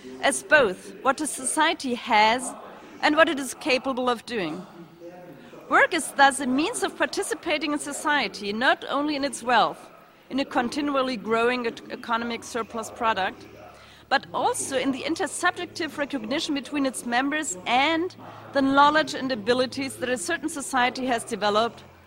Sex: female